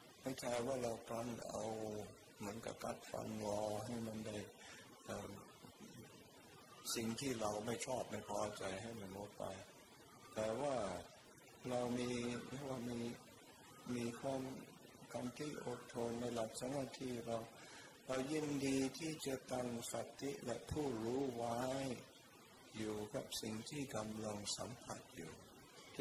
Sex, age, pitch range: male, 60-79, 110-130 Hz